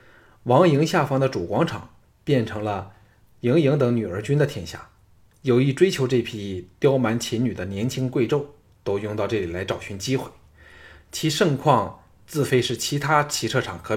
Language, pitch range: Chinese, 105-140 Hz